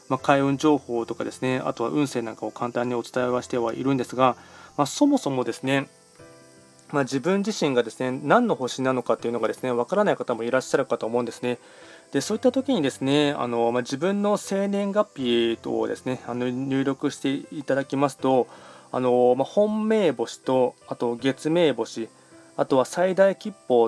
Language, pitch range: Japanese, 125-155 Hz